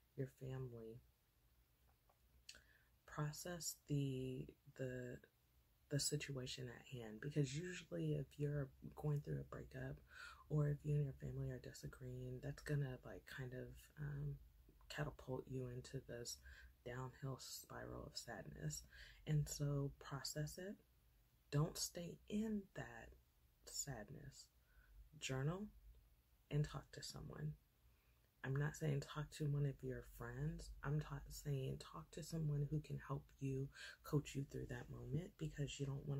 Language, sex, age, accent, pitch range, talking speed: English, female, 20-39, American, 120-150 Hz, 135 wpm